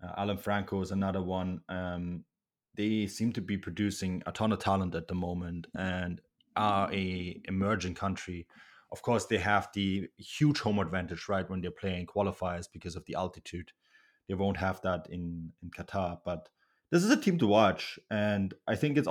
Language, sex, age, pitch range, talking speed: English, male, 20-39, 95-115 Hz, 185 wpm